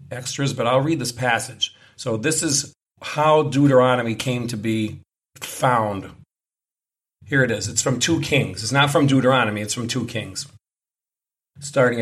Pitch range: 115-145 Hz